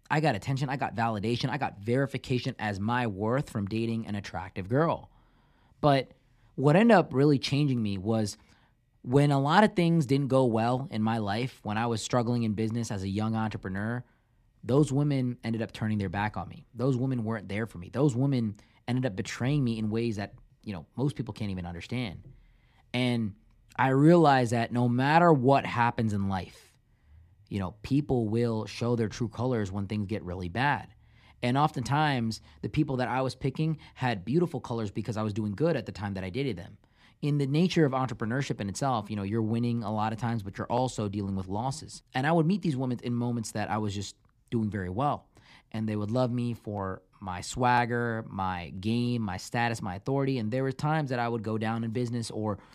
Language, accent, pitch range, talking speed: English, American, 105-130 Hz, 210 wpm